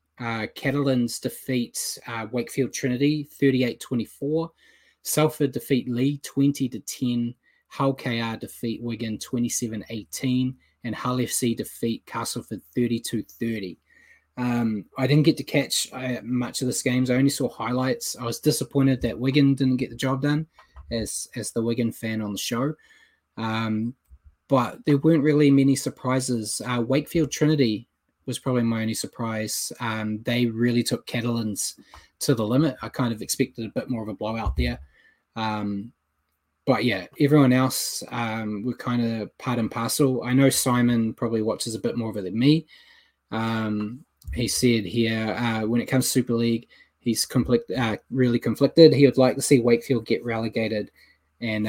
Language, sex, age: English, male, 20-39